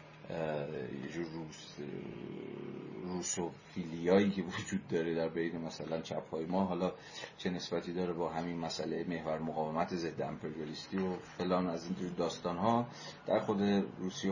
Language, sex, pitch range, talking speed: Persian, male, 85-100 Hz, 145 wpm